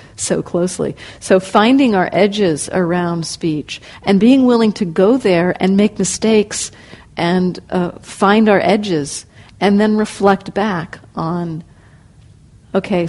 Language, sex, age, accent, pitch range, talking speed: English, female, 50-69, American, 170-200 Hz, 130 wpm